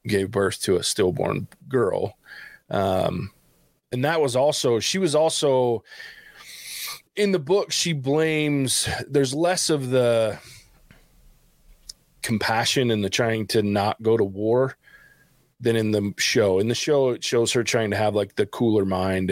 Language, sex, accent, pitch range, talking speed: English, male, American, 100-130 Hz, 150 wpm